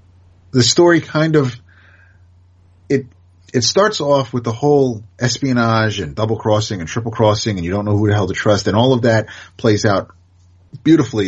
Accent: American